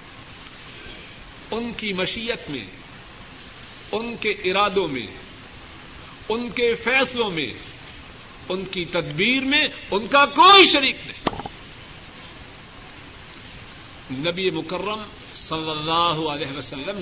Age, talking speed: 50-69, 95 wpm